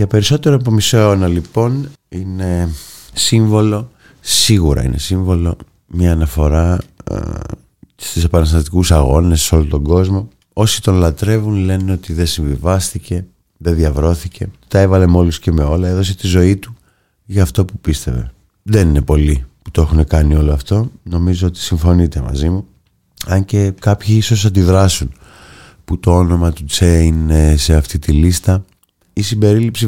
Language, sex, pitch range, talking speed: Greek, male, 80-100 Hz, 150 wpm